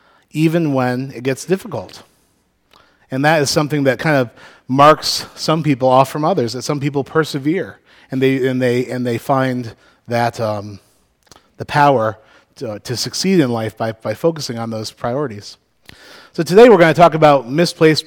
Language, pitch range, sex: English, 120-150 Hz, male